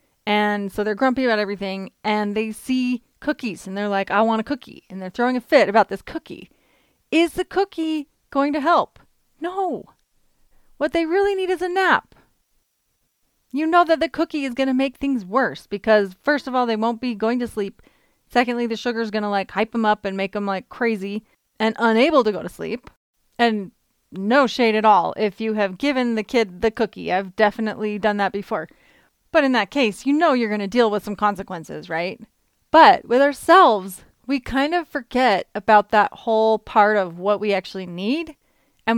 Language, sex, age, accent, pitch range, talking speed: English, female, 30-49, American, 210-275 Hz, 200 wpm